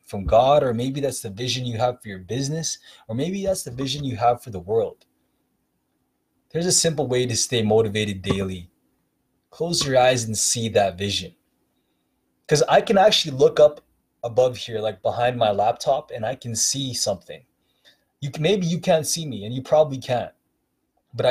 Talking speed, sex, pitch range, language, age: 185 wpm, male, 110-135 Hz, English, 20-39